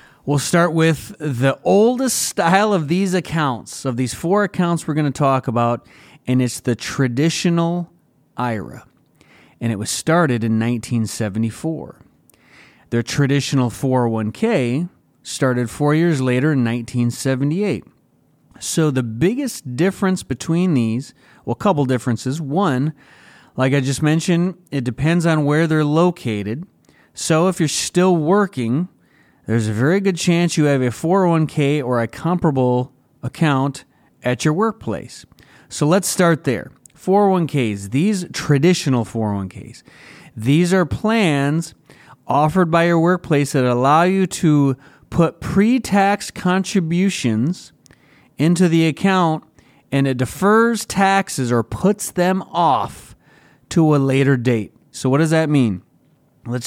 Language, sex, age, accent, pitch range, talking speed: English, male, 30-49, American, 125-175 Hz, 130 wpm